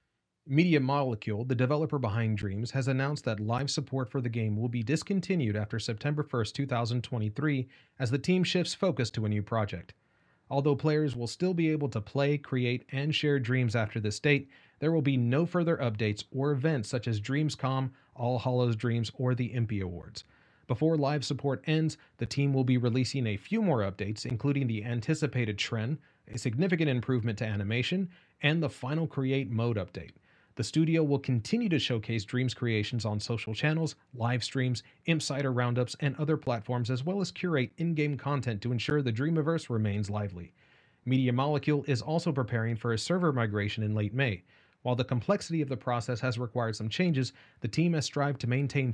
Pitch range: 115-150 Hz